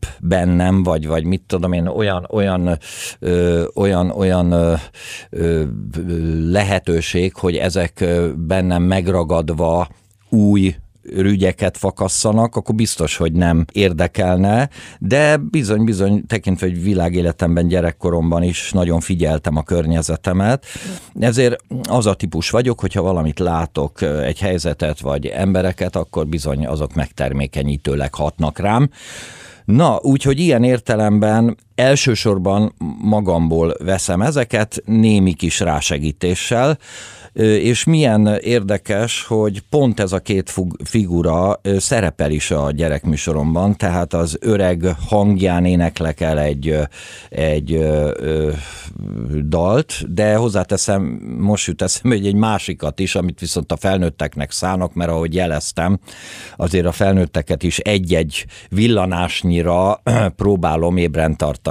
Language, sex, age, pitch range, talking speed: Hungarian, male, 50-69, 80-105 Hz, 115 wpm